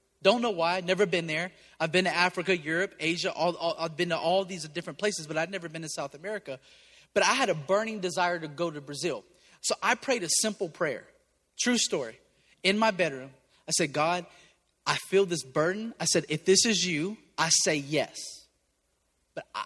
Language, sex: English, male